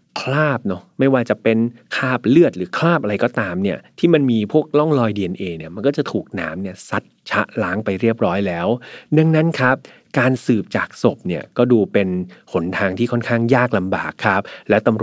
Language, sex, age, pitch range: Thai, male, 30-49, 100-135 Hz